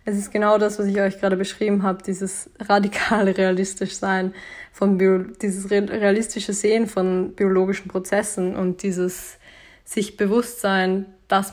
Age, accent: 20-39, German